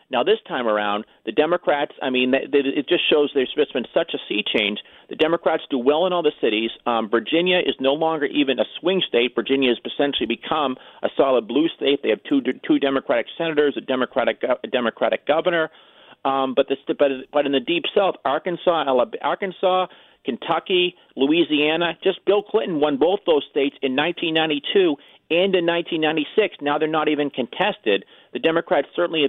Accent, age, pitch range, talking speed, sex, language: American, 40-59, 125-170 Hz, 180 wpm, male, English